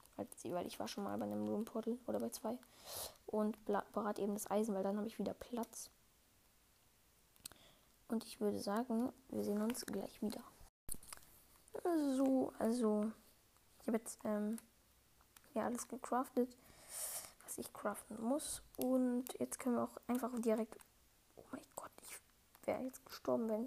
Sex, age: female, 20-39